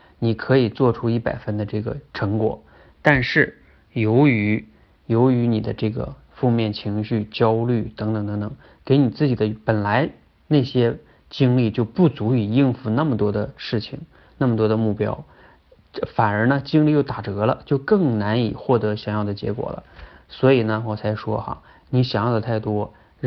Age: 20-39